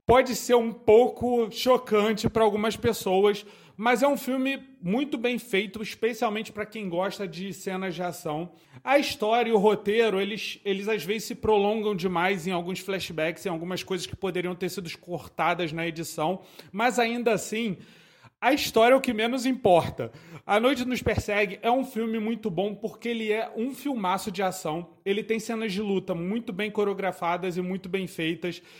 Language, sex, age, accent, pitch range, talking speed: Portuguese, male, 30-49, Brazilian, 185-235 Hz, 180 wpm